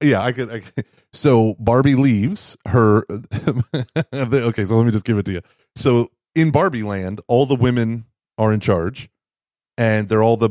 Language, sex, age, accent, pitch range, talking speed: English, male, 30-49, American, 100-120 Hz, 185 wpm